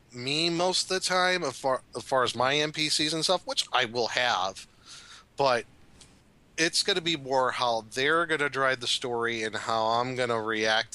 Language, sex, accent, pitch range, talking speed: English, male, American, 110-145 Hz, 205 wpm